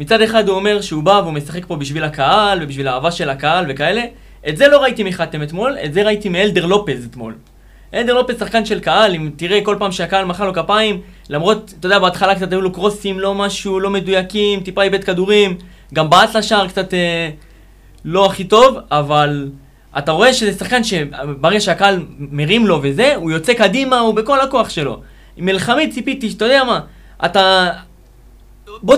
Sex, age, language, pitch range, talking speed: male, 20-39, Hebrew, 160-210 Hz, 185 wpm